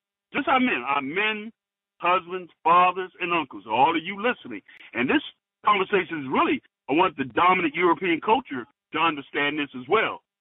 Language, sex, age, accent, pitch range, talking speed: English, male, 50-69, American, 150-205 Hz, 175 wpm